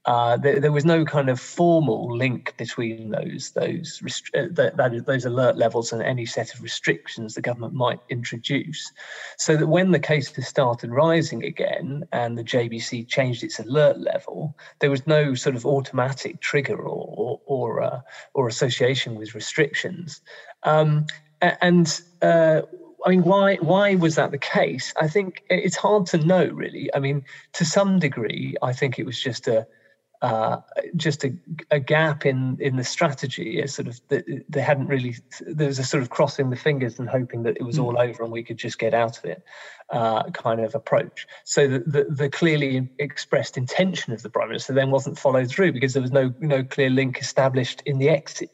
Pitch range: 125-155 Hz